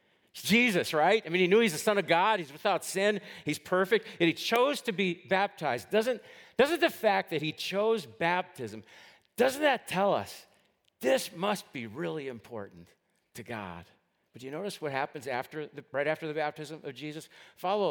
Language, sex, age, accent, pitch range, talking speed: English, male, 50-69, American, 115-180 Hz, 190 wpm